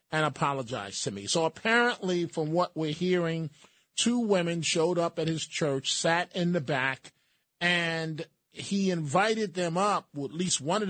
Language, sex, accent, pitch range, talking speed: English, male, American, 155-195 Hz, 160 wpm